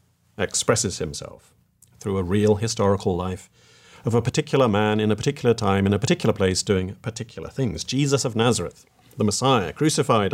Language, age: English, 40-59